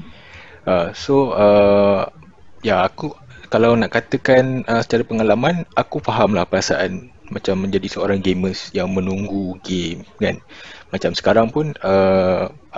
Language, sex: Malay, male